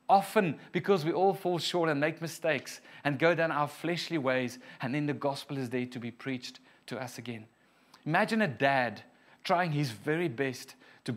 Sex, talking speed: male, 190 wpm